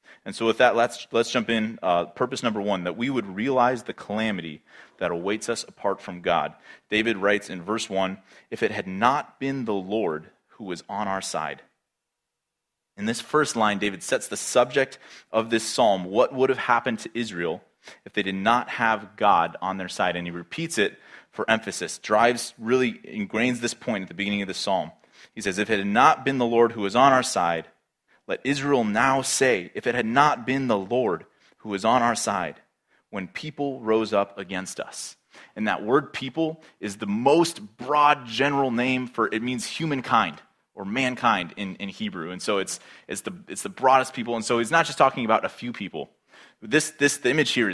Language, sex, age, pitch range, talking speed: English, male, 30-49, 105-135 Hz, 205 wpm